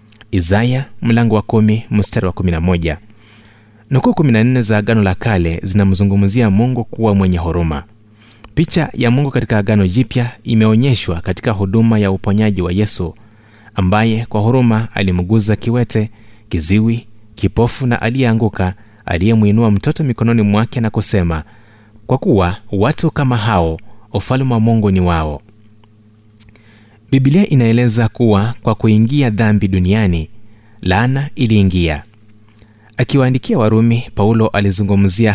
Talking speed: 115 wpm